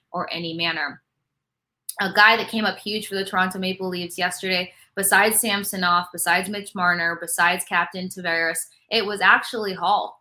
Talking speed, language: 165 wpm, English